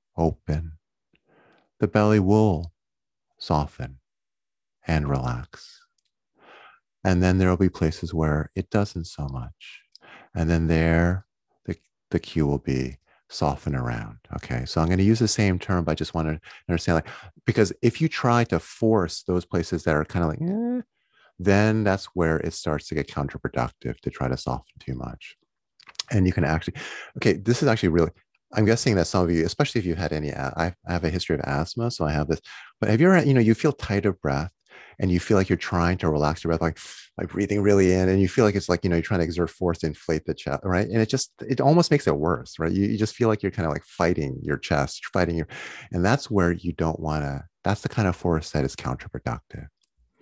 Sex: male